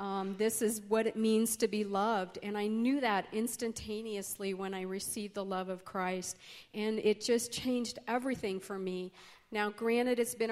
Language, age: English, 40-59